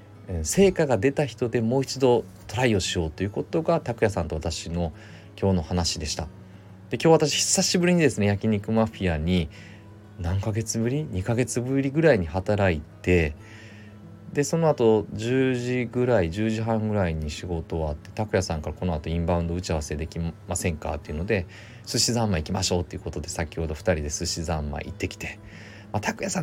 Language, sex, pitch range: Japanese, male, 85-110 Hz